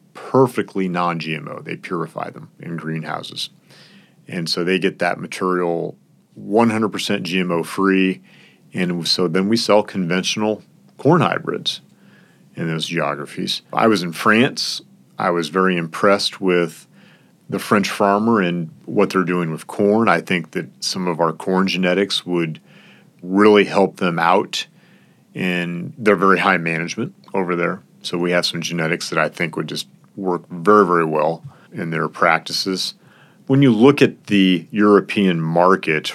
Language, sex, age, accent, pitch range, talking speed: English, male, 40-59, American, 85-105 Hz, 150 wpm